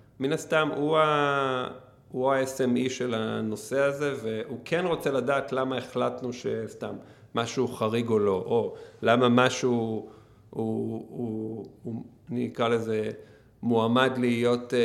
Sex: male